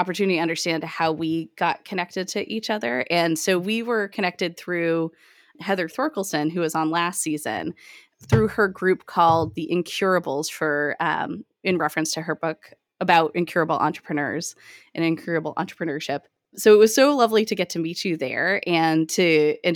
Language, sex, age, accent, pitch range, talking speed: English, female, 20-39, American, 160-195 Hz, 170 wpm